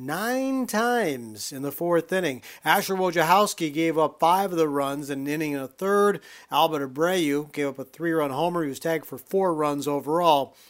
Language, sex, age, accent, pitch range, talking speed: English, male, 40-59, American, 145-185 Hz, 190 wpm